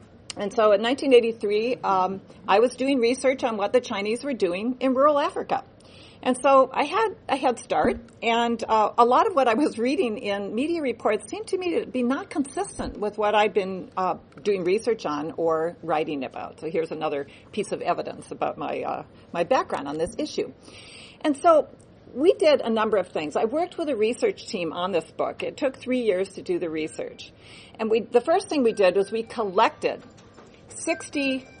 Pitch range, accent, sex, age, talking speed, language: 185-265 Hz, American, female, 50-69, 200 wpm, English